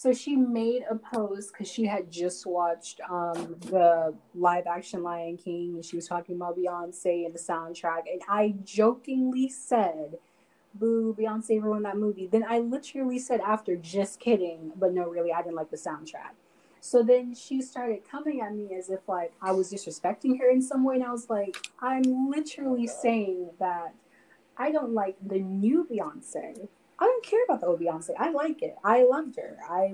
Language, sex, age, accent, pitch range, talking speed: English, female, 20-39, American, 175-225 Hz, 185 wpm